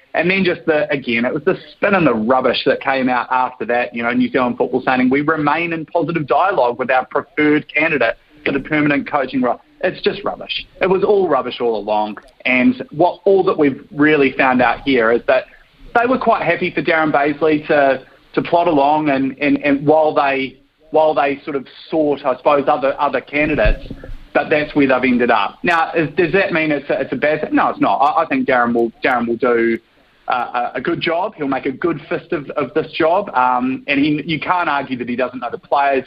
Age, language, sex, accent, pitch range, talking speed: 30-49, English, male, Australian, 125-155 Hz, 225 wpm